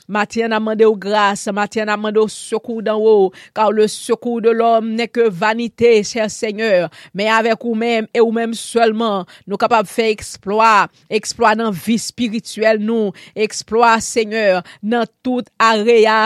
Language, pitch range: English, 215-235 Hz